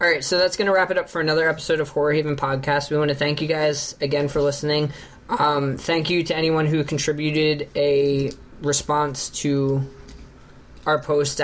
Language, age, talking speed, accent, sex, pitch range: English, 20-39, 195 wpm, American, male, 135-150 Hz